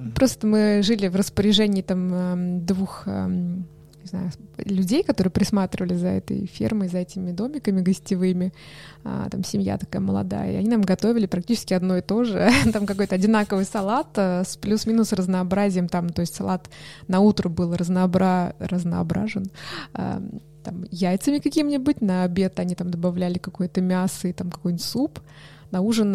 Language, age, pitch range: Russian, 20-39, 180-210 Hz